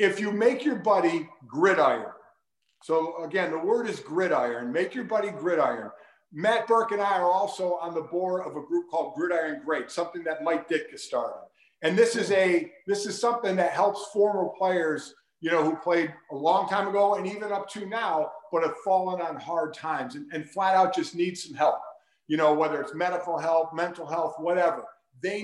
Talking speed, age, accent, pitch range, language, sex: 200 wpm, 50-69, American, 160-205 Hz, English, male